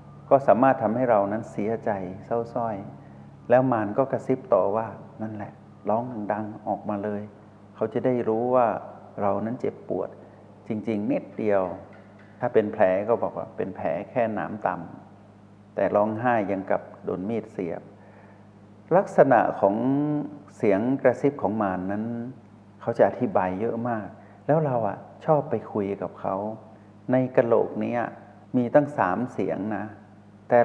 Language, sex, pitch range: Thai, male, 100-120 Hz